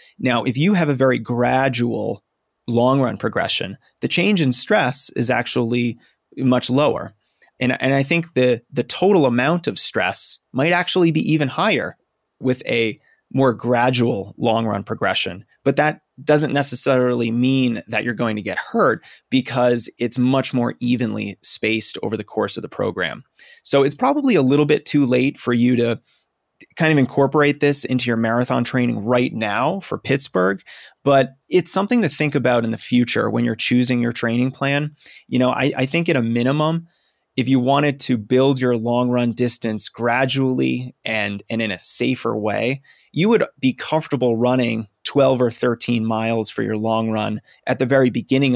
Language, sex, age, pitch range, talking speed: English, male, 30-49, 120-140 Hz, 175 wpm